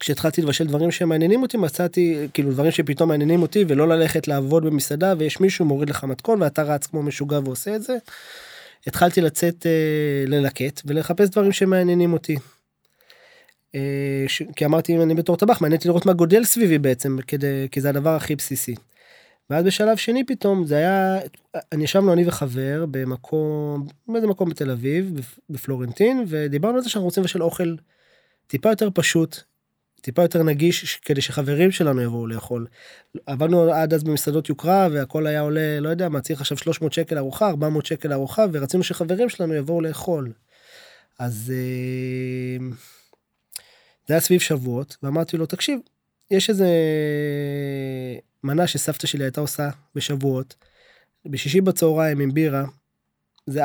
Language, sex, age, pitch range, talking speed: Hebrew, male, 20-39, 140-175 Hz, 135 wpm